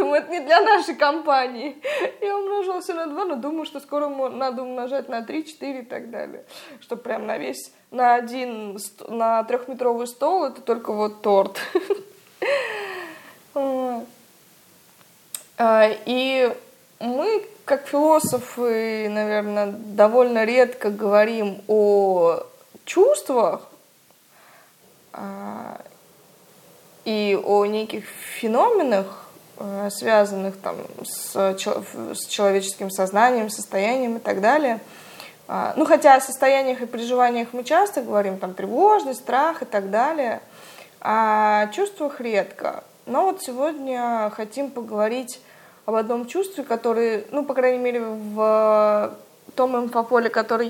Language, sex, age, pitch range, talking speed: Russian, female, 20-39, 215-290 Hz, 110 wpm